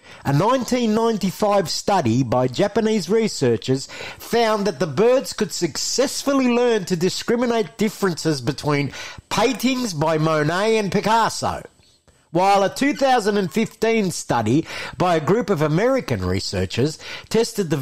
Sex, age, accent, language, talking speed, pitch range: male, 50-69, Australian, English, 115 wpm, 150-215 Hz